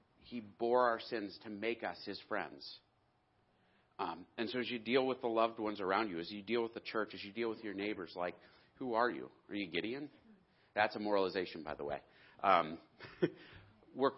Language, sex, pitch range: English, male, 95-115 Hz